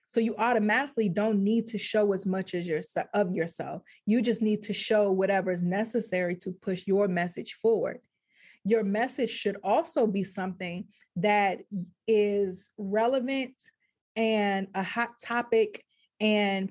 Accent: American